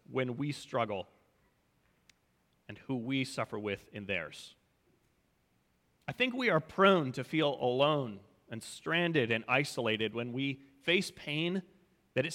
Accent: American